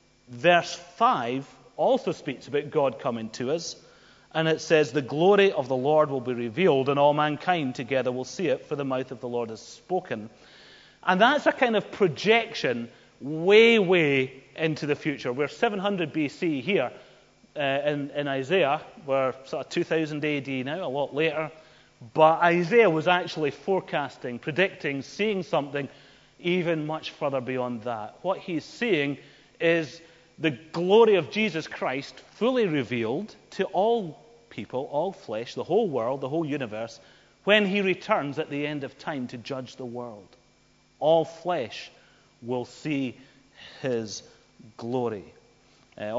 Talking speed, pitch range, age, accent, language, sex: 150 wpm, 130-175 Hz, 30-49, British, English, male